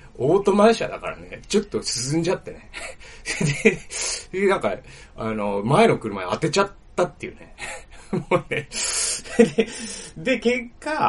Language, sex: Japanese, male